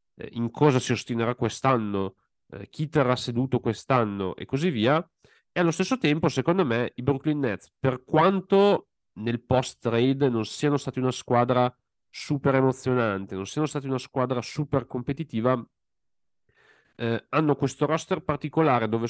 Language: Italian